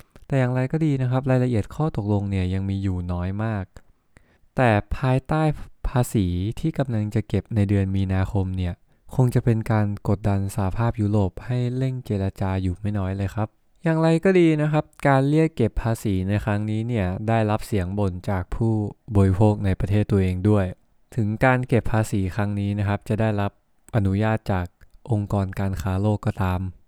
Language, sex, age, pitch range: English, male, 20-39, 100-125 Hz